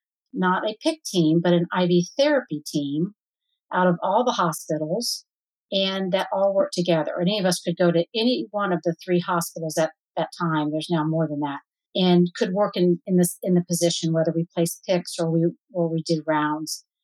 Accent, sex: American, female